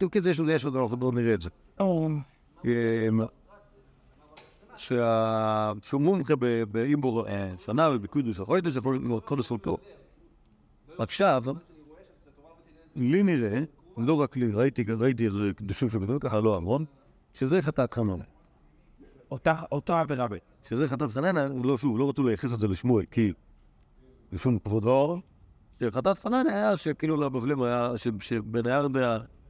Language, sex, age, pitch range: Hebrew, male, 60-79, 110-145 Hz